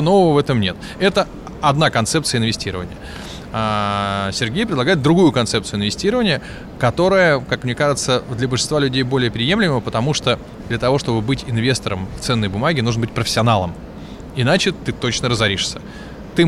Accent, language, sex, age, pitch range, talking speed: native, Russian, male, 20-39, 115-150 Hz, 150 wpm